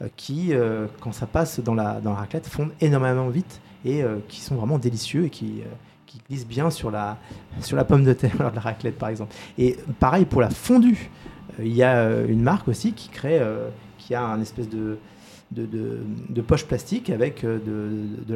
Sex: male